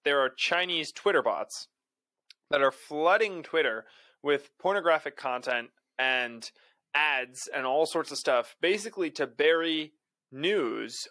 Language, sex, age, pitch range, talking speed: English, male, 20-39, 130-165 Hz, 125 wpm